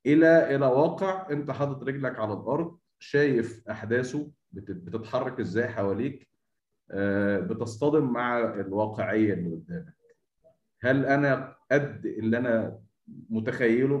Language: Arabic